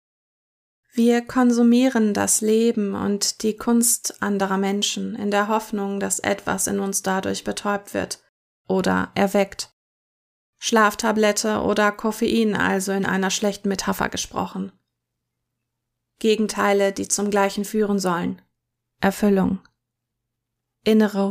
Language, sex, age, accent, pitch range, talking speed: German, female, 20-39, German, 190-215 Hz, 105 wpm